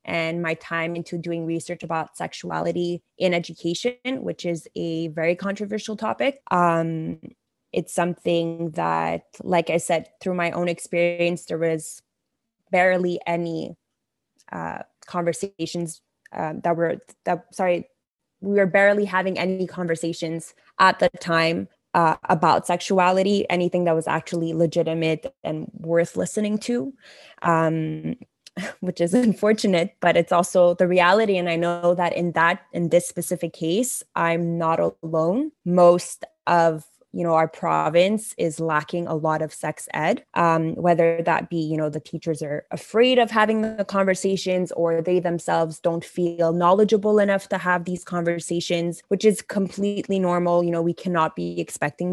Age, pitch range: 20-39, 165-190 Hz